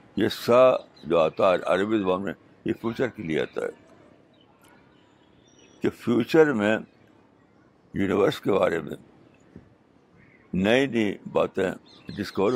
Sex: male